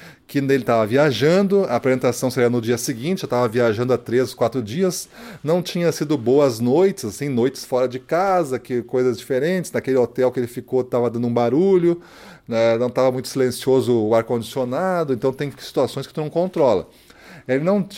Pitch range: 115-155 Hz